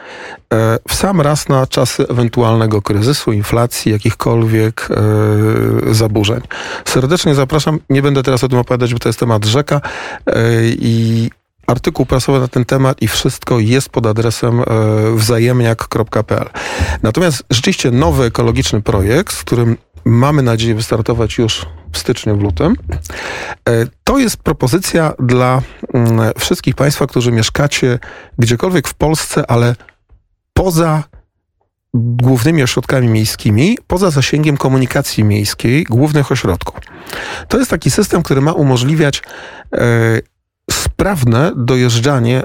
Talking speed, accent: 115 wpm, native